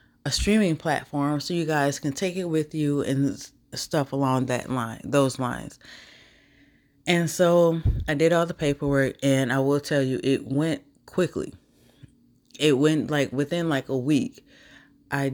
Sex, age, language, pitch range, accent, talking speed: female, 20-39, English, 130-150 Hz, American, 160 wpm